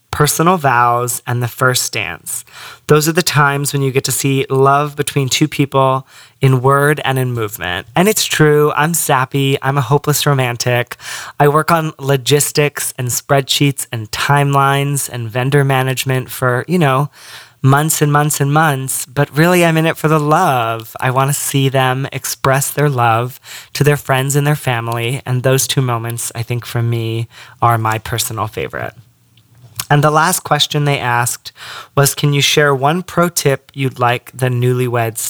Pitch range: 120-145 Hz